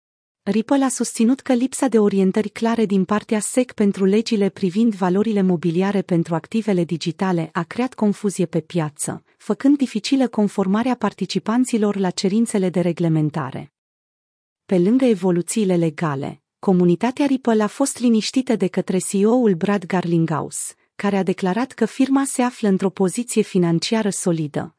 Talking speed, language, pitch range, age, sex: 140 wpm, Romanian, 180-230 Hz, 30-49, female